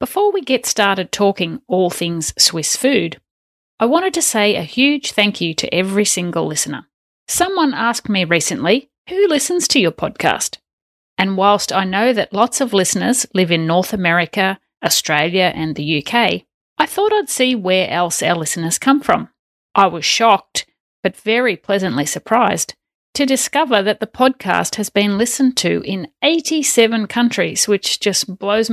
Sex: female